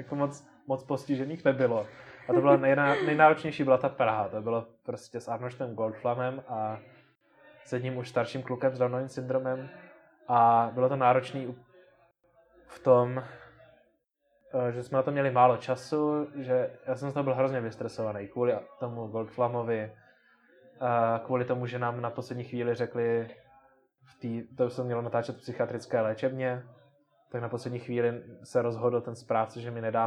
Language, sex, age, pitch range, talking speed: Czech, male, 20-39, 115-130 Hz, 160 wpm